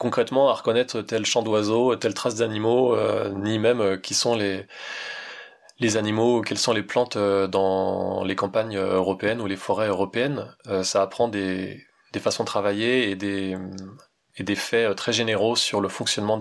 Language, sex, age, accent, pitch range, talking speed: French, male, 20-39, French, 95-115 Hz, 180 wpm